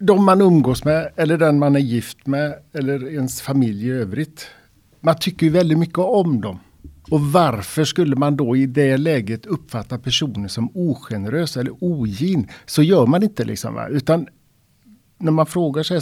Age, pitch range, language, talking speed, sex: 60-79, 120-160 Hz, Swedish, 175 wpm, male